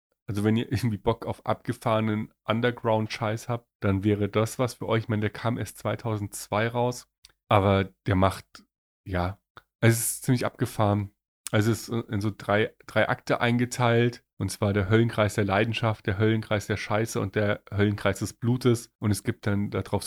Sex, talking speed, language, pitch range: male, 175 wpm, German, 100-120 Hz